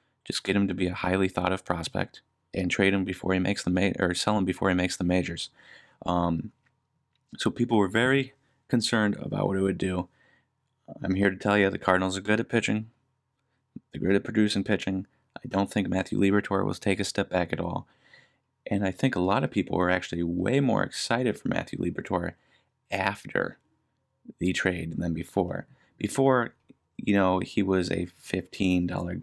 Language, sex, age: English, male, 30-49